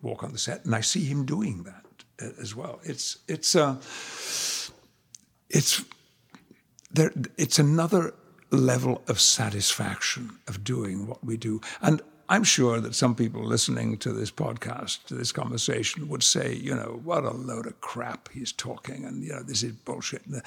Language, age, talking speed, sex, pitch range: English, 60-79, 165 wpm, male, 105-140 Hz